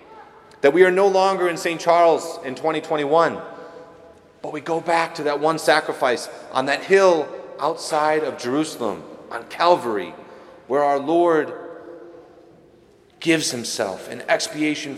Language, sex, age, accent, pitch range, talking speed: English, male, 30-49, American, 140-185 Hz, 130 wpm